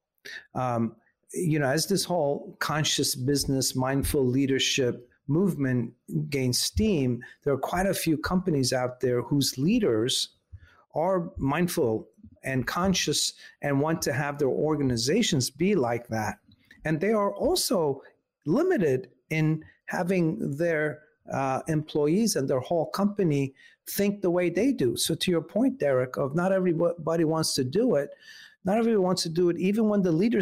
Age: 50-69